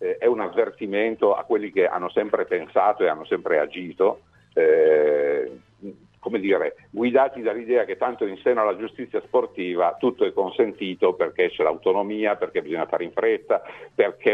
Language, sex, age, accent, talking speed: Italian, male, 50-69, native, 155 wpm